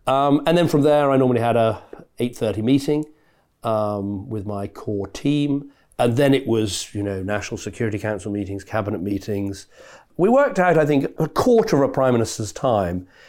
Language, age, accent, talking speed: English, 40-59, British, 180 wpm